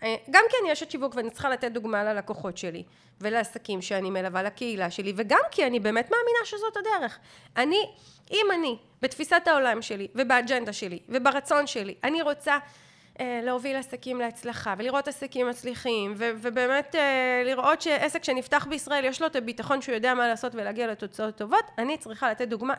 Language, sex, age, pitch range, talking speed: Hebrew, female, 30-49, 235-345 Hz, 165 wpm